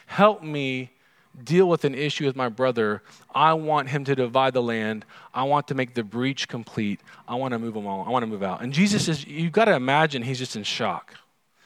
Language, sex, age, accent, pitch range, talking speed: English, male, 40-59, American, 110-155 Hz, 225 wpm